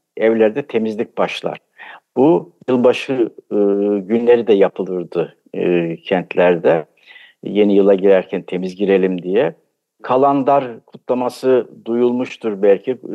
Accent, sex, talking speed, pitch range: native, male, 95 wpm, 105-135 Hz